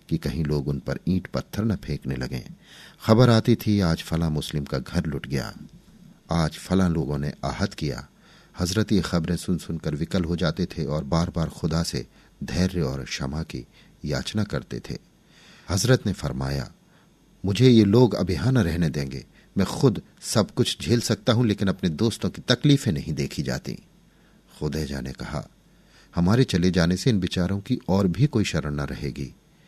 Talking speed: 175 wpm